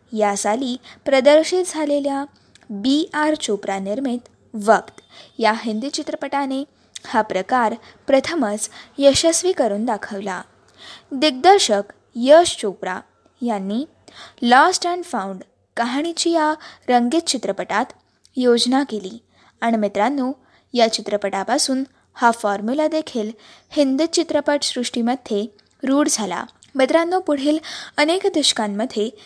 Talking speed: 90 wpm